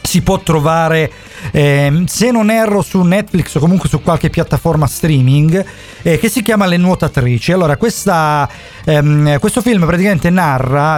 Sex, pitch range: male, 135-170 Hz